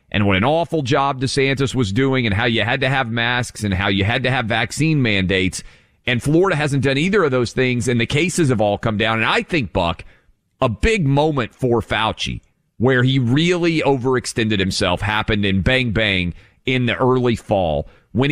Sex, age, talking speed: male, 40-59, 200 wpm